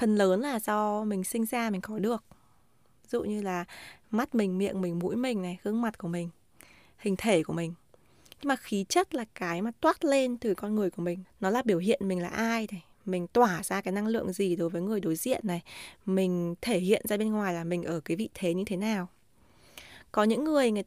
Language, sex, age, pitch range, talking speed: Vietnamese, female, 20-39, 185-230 Hz, 240 wpm